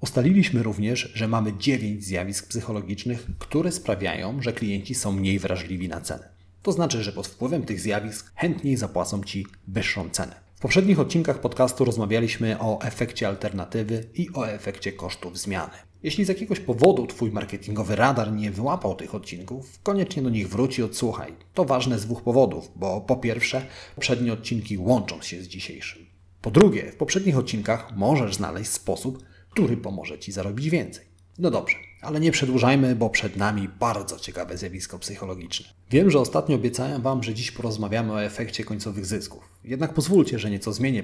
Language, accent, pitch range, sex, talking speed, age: Polish, native, 95-130 Hz, male, 165 wpm, 30-49